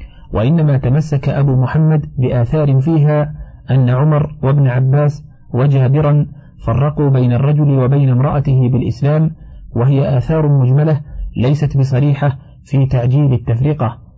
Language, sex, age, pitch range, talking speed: Arabic, male, 50-69, 125-145 Hz, 110 wpm